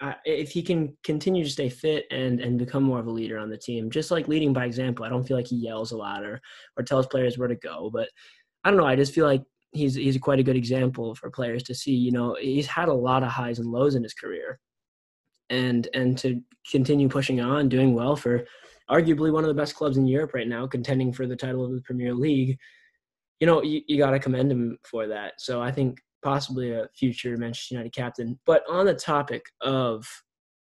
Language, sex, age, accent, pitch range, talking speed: English, male, 20-39, American, 125-150 Hz, 230 wpm